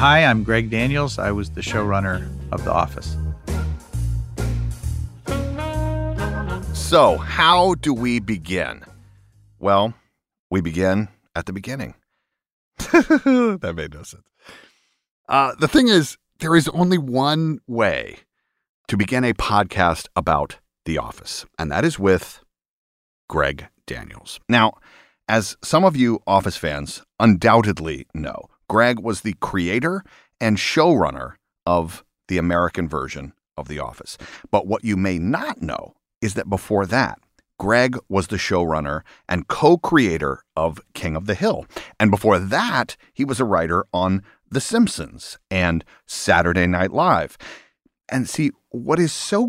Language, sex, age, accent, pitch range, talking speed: English, male, 40-59, American, 85-125 Hz, 135 wpm